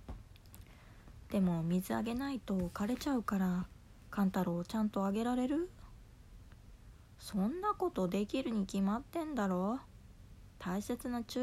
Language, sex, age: Japanese, female, 20-39